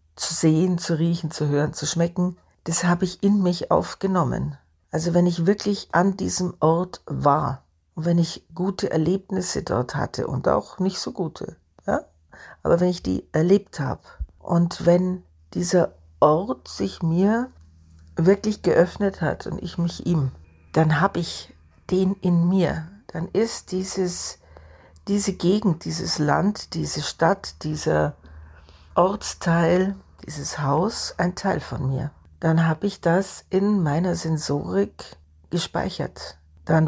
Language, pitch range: German, 150-185 Hz